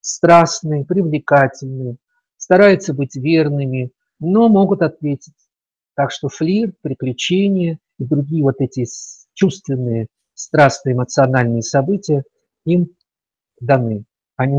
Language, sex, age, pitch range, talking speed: Russian, male, 50-69, 135-170 Hz, 95 wpm